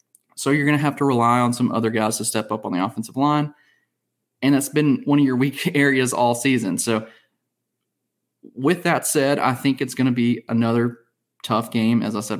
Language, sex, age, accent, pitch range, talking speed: English, male, 20-39, American, 115-130 Hz, 215 wpm